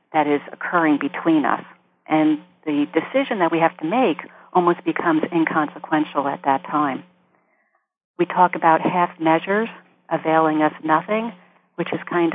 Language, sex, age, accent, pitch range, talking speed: English, female, 50-69, American, 155-180 Hz, 145 wpm